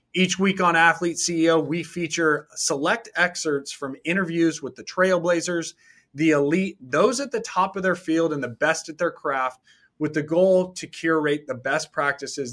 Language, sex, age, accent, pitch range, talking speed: English, male, 30-49, American, 140-165 Hz, 175 wpm